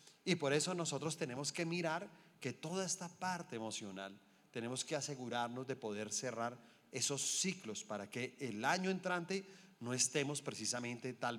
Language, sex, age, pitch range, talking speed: Spanish, male, 30-49, 125-180 Hz, 155 wpm